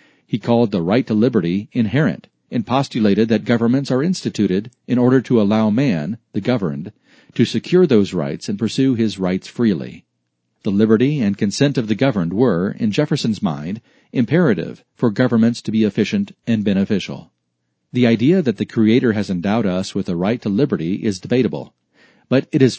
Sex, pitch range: male, 105-140 Hz